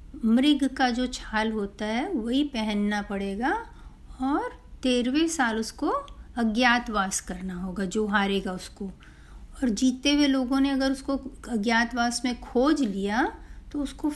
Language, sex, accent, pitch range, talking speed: Hindi, female, native, 215-285 Hz, 135 wpm